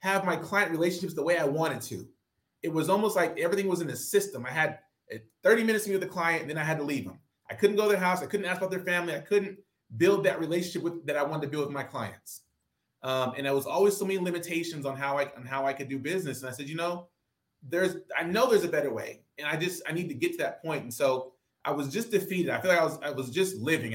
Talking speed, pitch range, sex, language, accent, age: 285 wpm, 130-175 Hz, male, English, American, 20-39